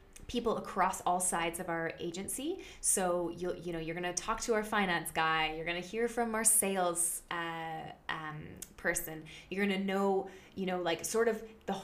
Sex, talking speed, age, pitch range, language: female, 180 wpm, 20-39, 165-195 Hz, English